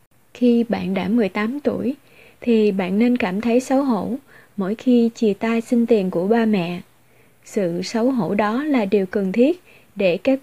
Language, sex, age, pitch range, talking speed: Vietnamese, female, 20-39, 190-235 Hz, 180 wpm